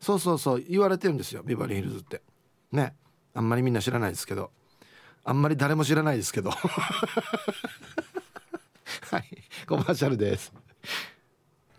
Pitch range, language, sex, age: 125-185 Hz, Japanese, male, 40-59